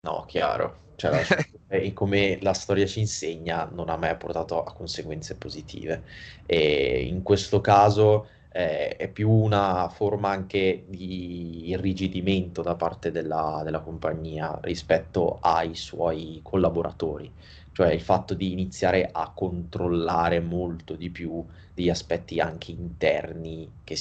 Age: 20-39